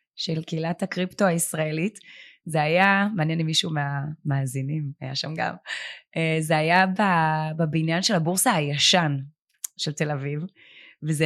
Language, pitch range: Hebrew, 155-180 Hz